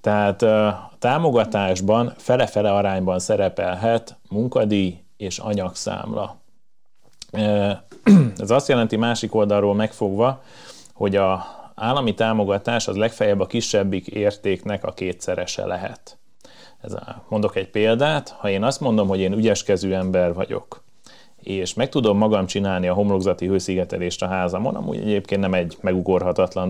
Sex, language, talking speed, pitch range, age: male, Hungarian, 120 wpm, 95-110 Hz, 30-49